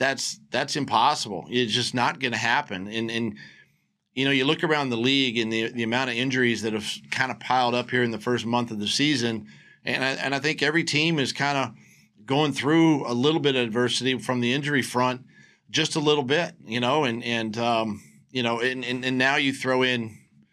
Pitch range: 115-130 Hz